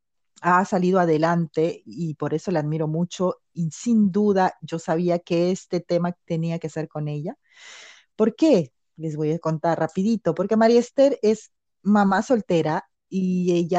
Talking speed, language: 160 wpm, Spanish